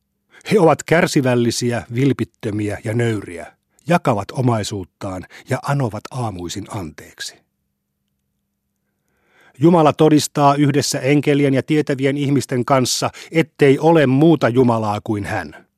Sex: male